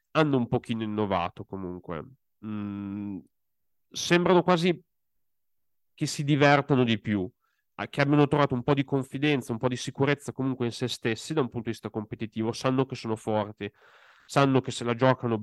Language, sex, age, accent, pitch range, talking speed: Italian, male, 40-59, native, 110-130 Hz, 165 wpm